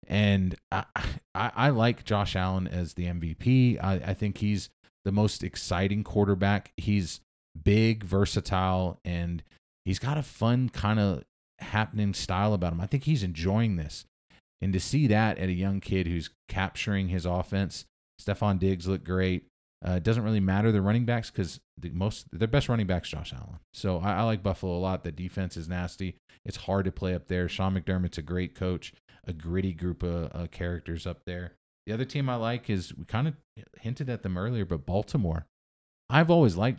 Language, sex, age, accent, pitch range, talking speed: English, male, 30-49, American, 85-105 Hz, 190 wpm